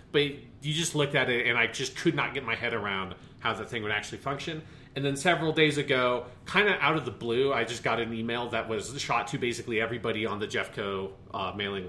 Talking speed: 240 wpm